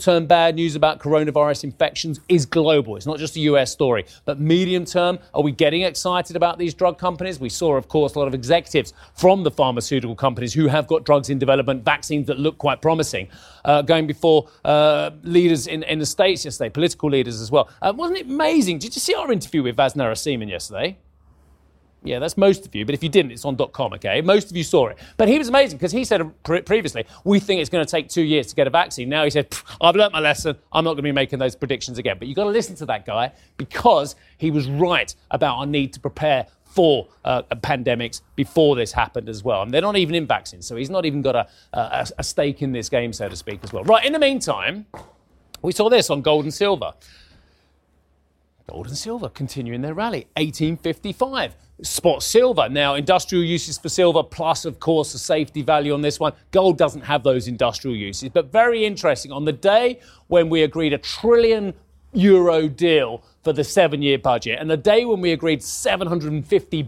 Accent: British